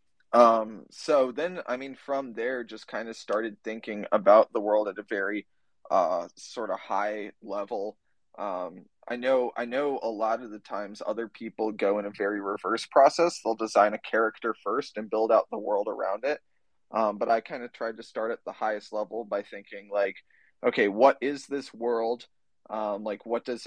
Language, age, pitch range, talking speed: English, 20-39, 105-120 Hz, 195 wpm